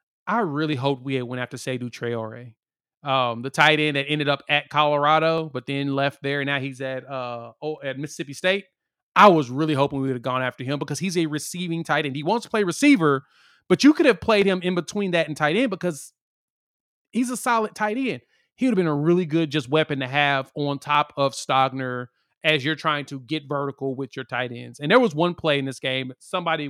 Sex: male